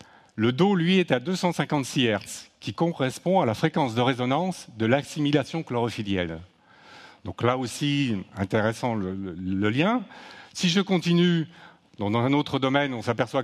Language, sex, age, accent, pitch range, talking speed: French, male, 50-69, French, 110-140 Hz, 150 wpm